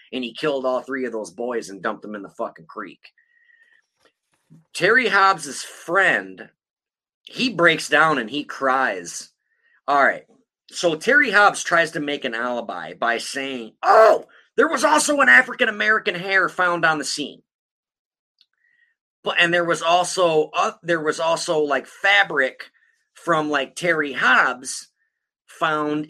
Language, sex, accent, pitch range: English, male, American, 130-195 Hz